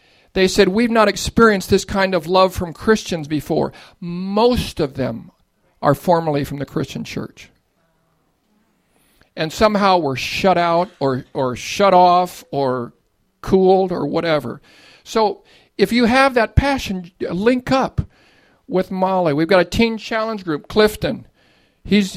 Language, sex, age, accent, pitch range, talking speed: English, male, 50-69, American, 165-220 Hz, 140 wpm